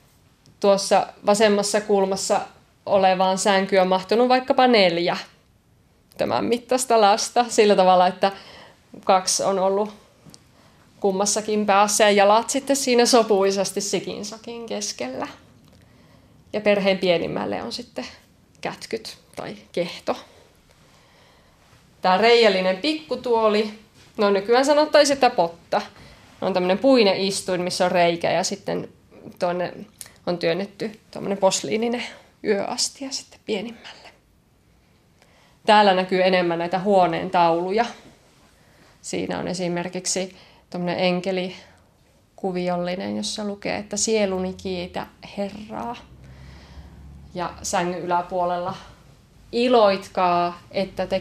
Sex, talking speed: female, 95 wpm